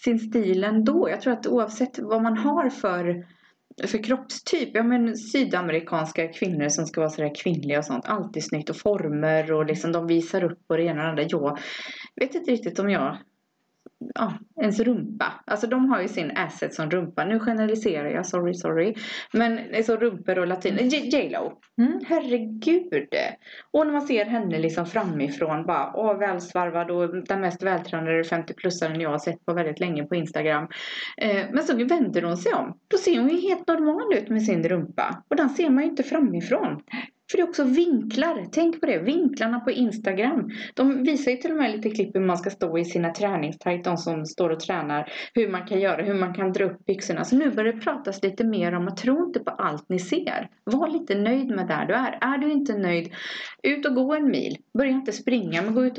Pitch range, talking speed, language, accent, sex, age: 175-260 Hz, 210 wpm, Swedish, native, female, 30-49